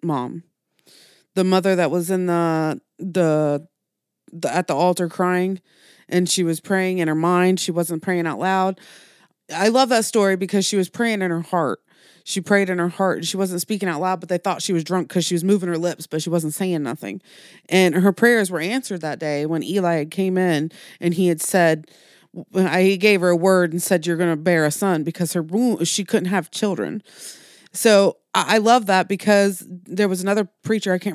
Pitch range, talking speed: 175-205 Hz, 210 wpm